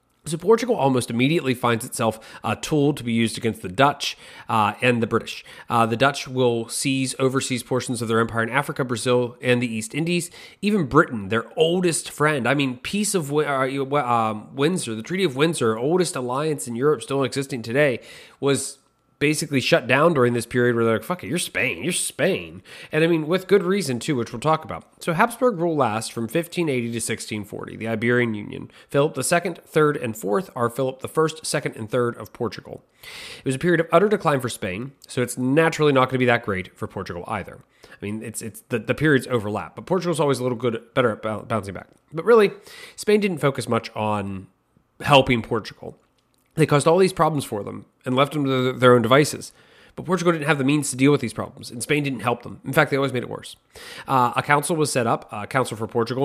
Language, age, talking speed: English, 30-49, 215 wpm